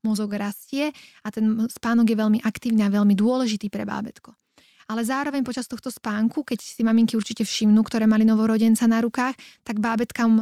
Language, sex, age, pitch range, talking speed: Slovak, female, 20-39, 210-235 Hz, 175 wpm